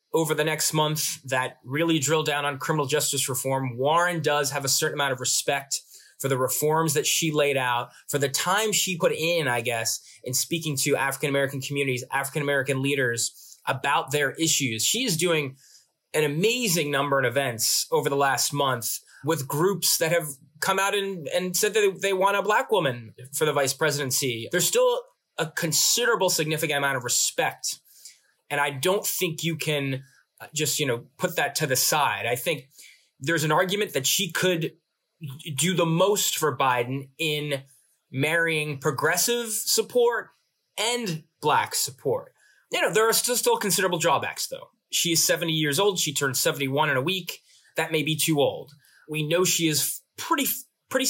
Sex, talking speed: male, 175 wpm